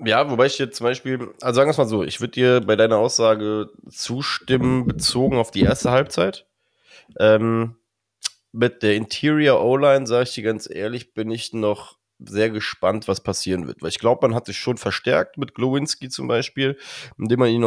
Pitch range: 105-120 Hz